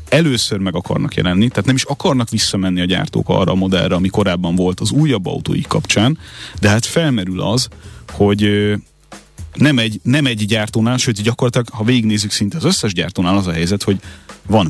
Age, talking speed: 30-49, 180 wpm